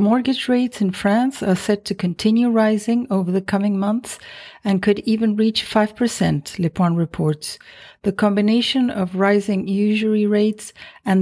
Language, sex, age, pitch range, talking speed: English, female, 50-69, 195-225 Hz, 145 wpm